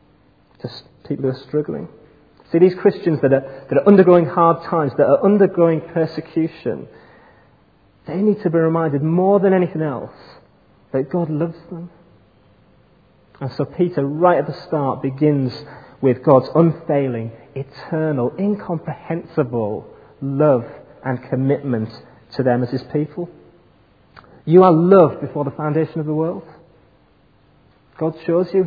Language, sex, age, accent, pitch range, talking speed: English, male, 30-49, British, 135-170 Hz, 135 wpm